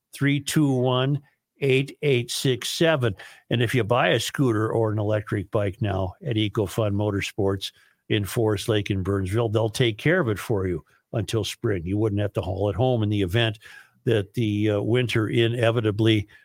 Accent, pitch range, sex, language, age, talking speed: American, 105-125 Hz, male, English, 50-69, 180 wpm